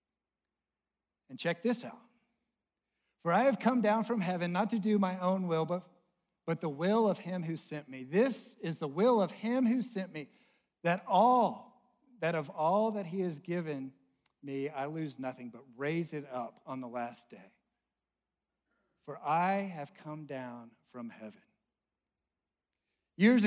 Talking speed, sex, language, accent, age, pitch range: 165 wpm, male, English, American, 50-69, 150-215 Hz